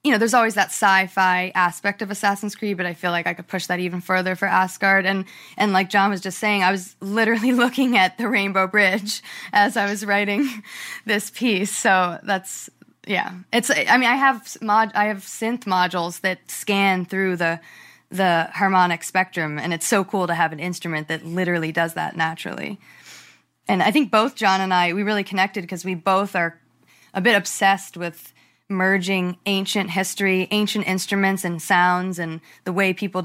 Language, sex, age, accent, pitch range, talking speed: English, female, 20-39, American, 170-205 Hz, 190 wpm